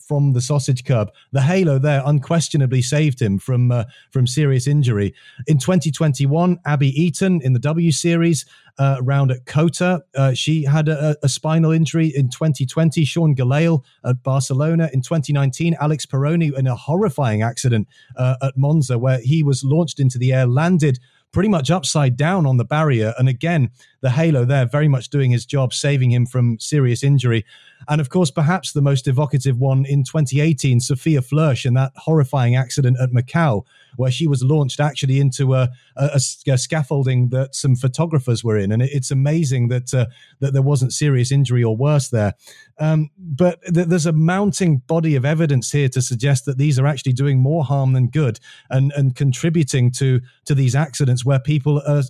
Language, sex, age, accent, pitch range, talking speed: English, male, 30-49, British, 130-155 Hz, 180 wpm